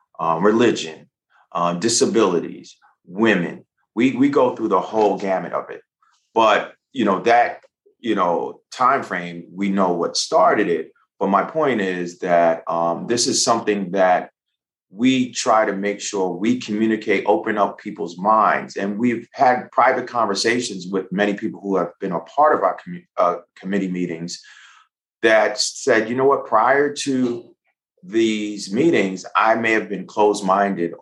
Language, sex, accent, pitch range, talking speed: English, male, American, 90-110 Hz, 155 wpm